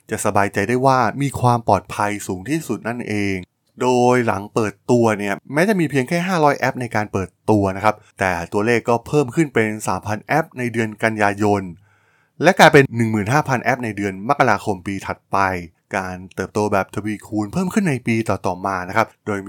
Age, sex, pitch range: 20-39, male, 100-130 Hz